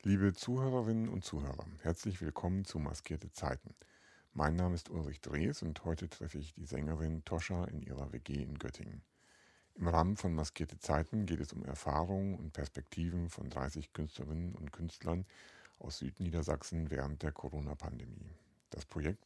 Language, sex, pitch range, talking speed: German, male, 75-90 Hz, 155 wpm